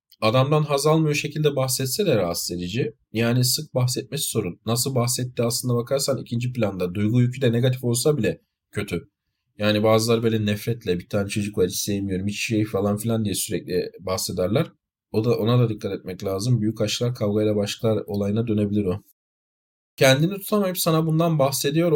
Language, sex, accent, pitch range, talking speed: Turkish, male, native, 105-140 Hz, 165 wpm